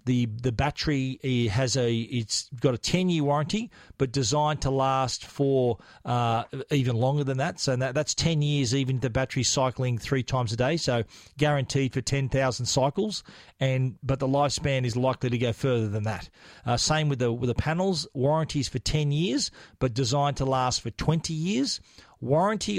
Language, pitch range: English, 125-145 Hz